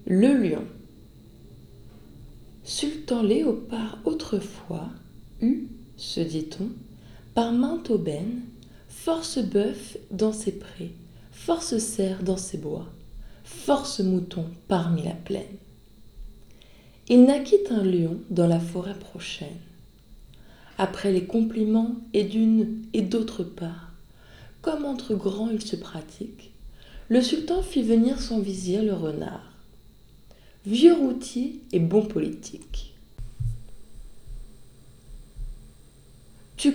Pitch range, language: 170-245 Hz, French